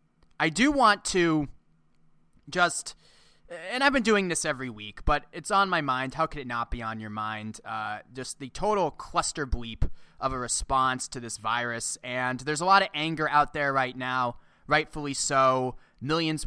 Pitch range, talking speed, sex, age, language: 130-160 Hz, 180 wpm, male, 20-39, English